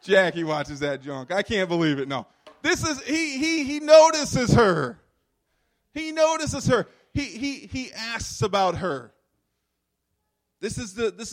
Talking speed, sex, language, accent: 155 wpm, male, English, American